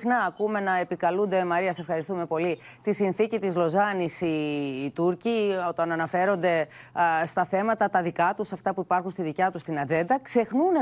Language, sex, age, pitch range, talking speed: Greek, female, 30-49, 165-235 Hz, 170 wpm